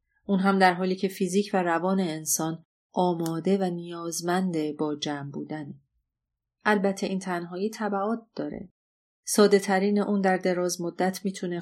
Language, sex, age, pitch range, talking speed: Persian, female, 30-49, 170-200 Hz, 140 wpm